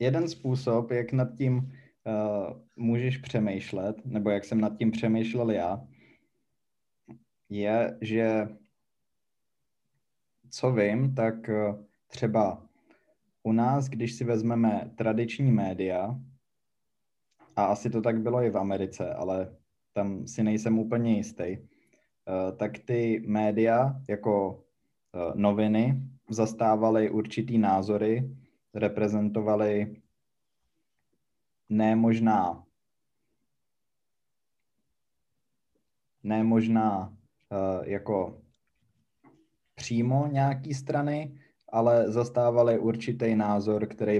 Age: 20-39